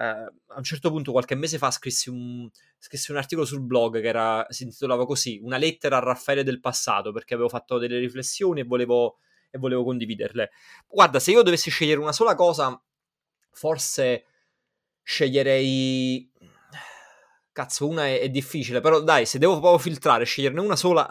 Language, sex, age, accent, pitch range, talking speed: Italian, male, 20-39, native, 125-165 Hz, 170 wpm